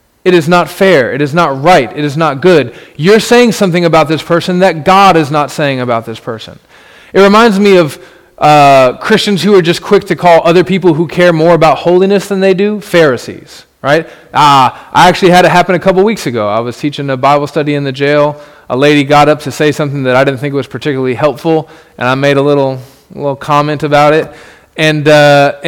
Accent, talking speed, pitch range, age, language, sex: American, 220 wpm, 145-190 Hz, 20-39, English, male